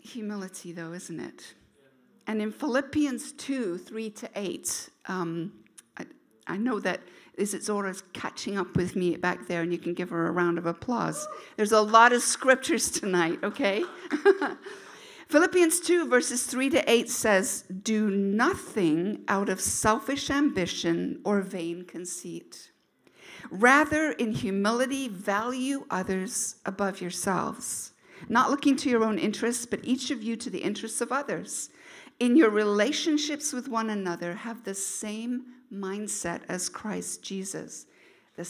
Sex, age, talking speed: female, 50-69, 140 wpm